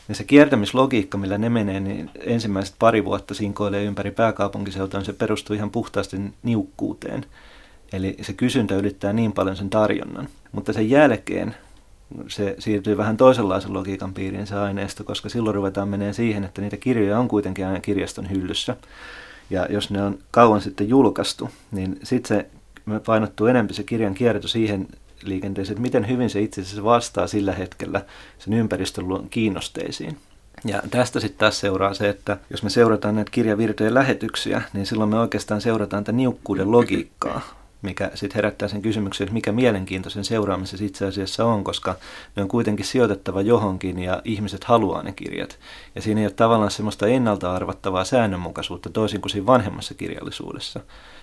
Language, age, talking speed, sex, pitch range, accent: Finnish, 30-49, 160 wpm, male, 100-110 Hz, native